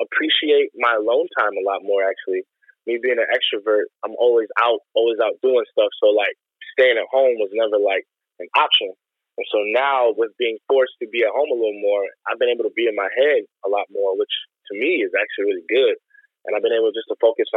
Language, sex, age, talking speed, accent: English, male, 20-39, 230 wpm, American